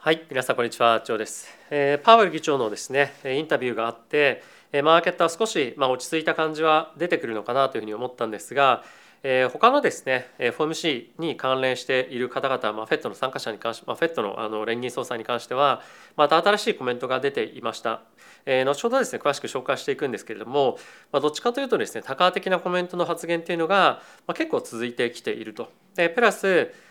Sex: male